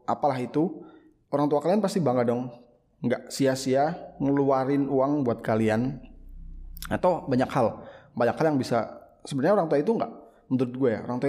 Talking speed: 165 wpm